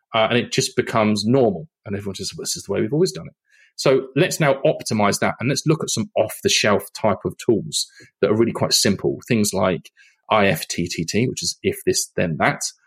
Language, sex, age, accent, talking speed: English, male, 30-49, British, 210 wpm